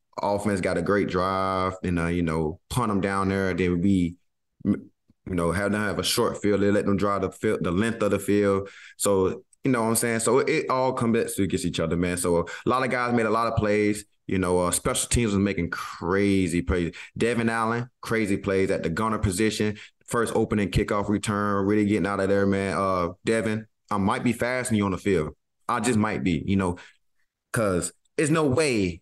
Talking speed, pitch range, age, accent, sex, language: 225 wpm, 90-110 Hz, 20-39, American, male, English